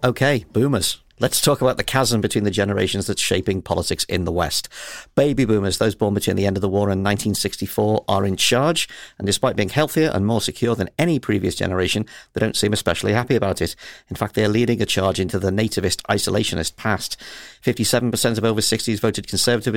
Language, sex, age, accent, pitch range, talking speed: English, male, 50-69, British, 95-120 Hz, 200 wpm